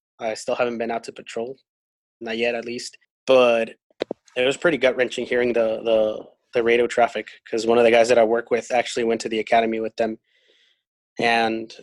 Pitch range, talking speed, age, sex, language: 115-130 Hz, 205 wpm, 20-39, male, English